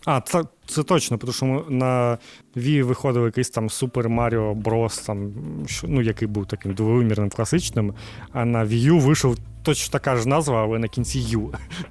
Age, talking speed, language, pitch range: 20-39, 170 wpm, Ukrainian, 110-130 Hz